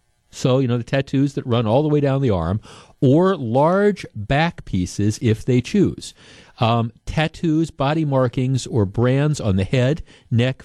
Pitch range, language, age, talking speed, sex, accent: 115-150 Hz, English, 50-69, 170 wpm, male, American